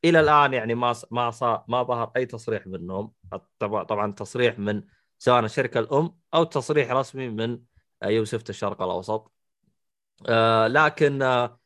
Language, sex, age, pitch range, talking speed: Arabic, male, 20-39, 105-130 Hz, 135 wpm